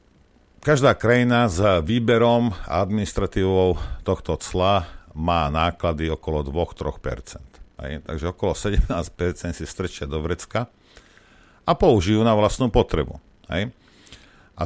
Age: 50-69